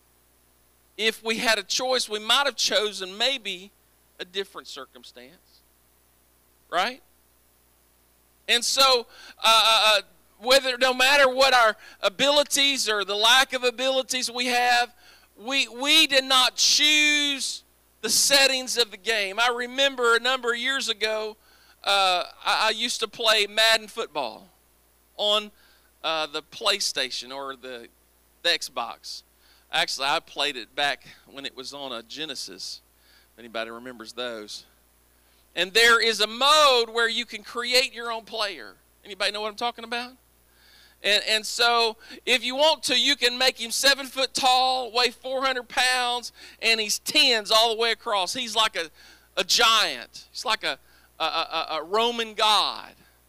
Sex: male